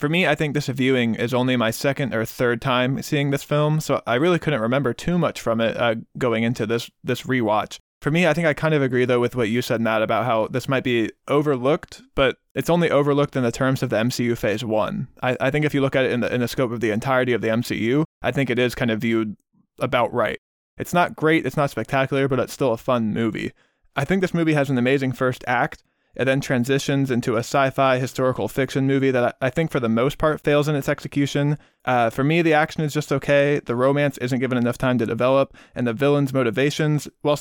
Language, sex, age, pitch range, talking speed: English, male, 20-39, 120-145 Hz, 245 wpm